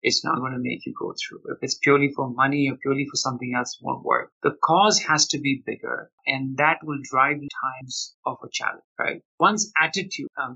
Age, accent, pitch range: 50-69, Indian, 135-155 Hz